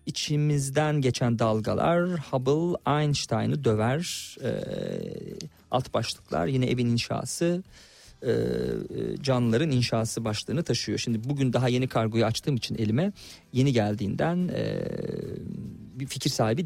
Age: 40-59